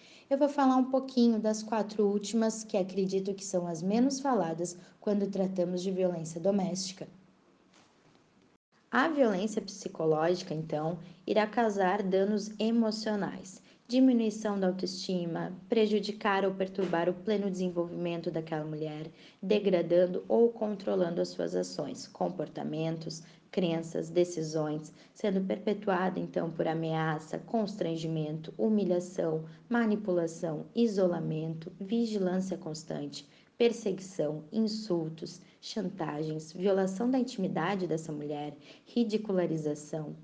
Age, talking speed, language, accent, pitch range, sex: 20-39, 100 wpm, Portuguese, Brazilian, 165-215 Hz, female